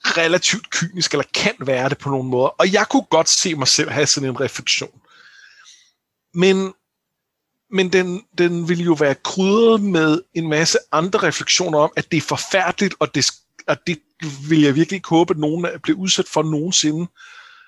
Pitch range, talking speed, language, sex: 140-190 Hz, 175 wpm, Danish, male